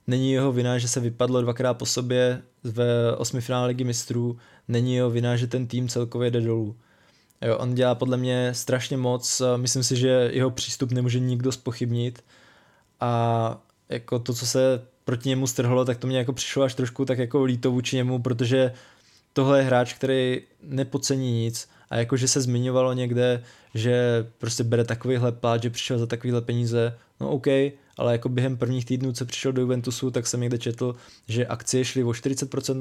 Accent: native